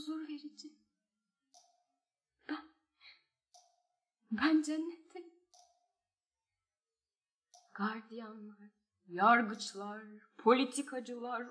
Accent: native